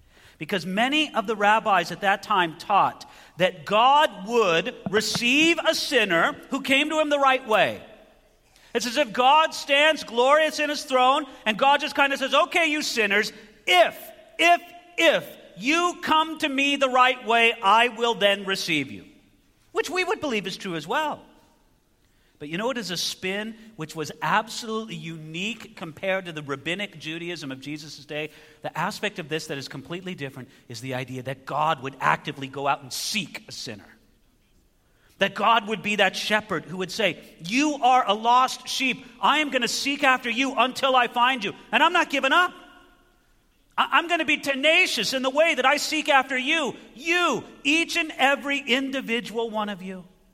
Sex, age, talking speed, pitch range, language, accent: male, 40-59, 185 wpm, 175-270 Hz, English, American